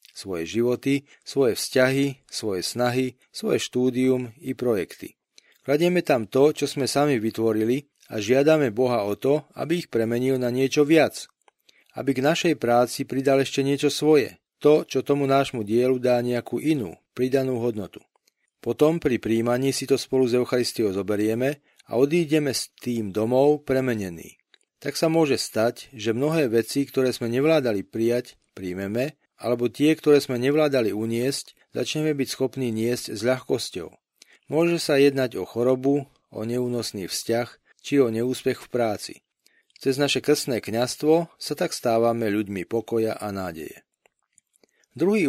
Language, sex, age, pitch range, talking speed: Slovak, male, 40-59, 115-140 Hz, 145 wpm